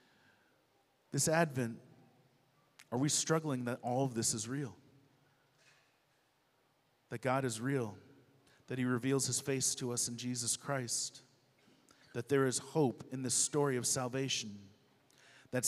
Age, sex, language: 40-59, male, English